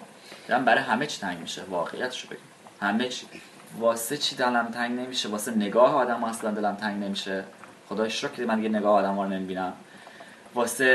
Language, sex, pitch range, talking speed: English, male, 110-130 Hz, 165 wpm